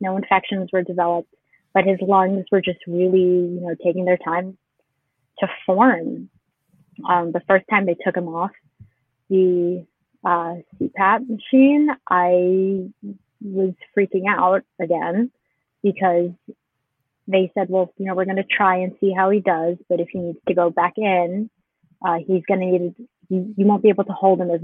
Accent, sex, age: American, female, 20-39